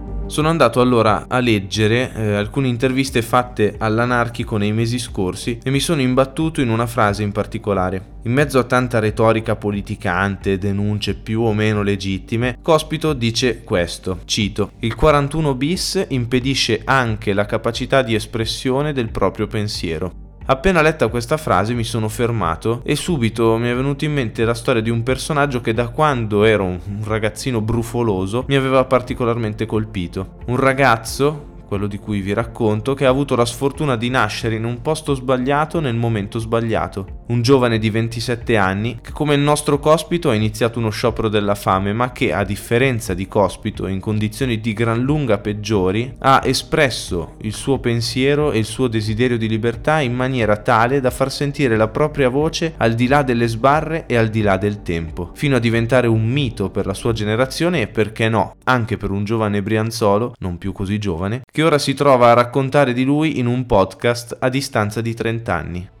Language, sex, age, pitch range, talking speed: Italian, male, 20-39, 105-130 Hz, 180 wpm